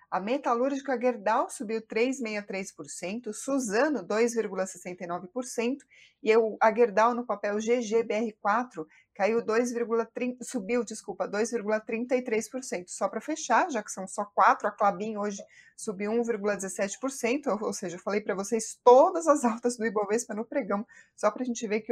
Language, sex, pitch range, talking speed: Portuguese, female, 205-245 Hz, 135 wpm